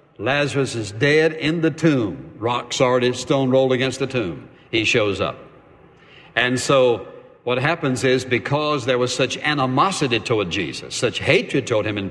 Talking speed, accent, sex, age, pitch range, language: 165 wpm, American, male, 60-79, 125-155 Hz, English